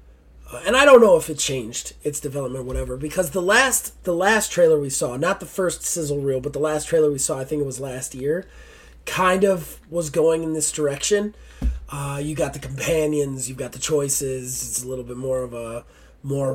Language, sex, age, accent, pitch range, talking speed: English, male, 30-49, American, 130-180 Hz, 220 wpm